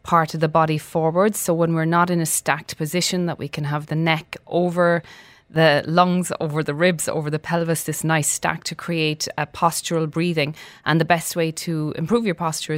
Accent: Irish